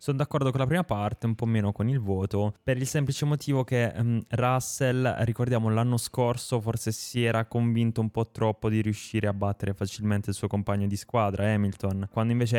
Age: 20-39